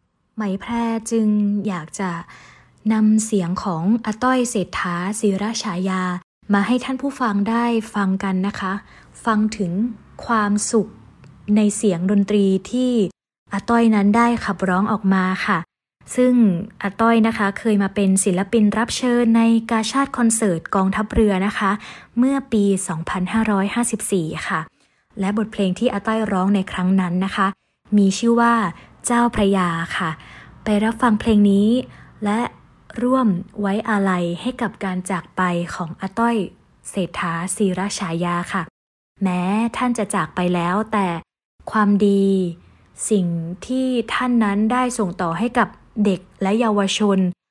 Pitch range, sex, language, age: 190-225 Hz, female, Thai, 20-39